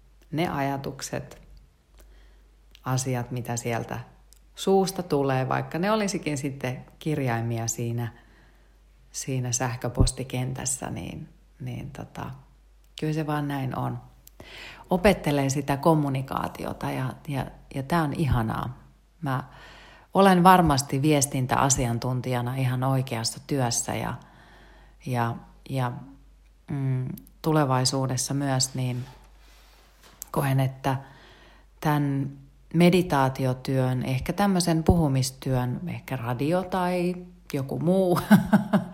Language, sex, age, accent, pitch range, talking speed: Finnish, female, 40-59, native, 125-160 Hz, 90 wpm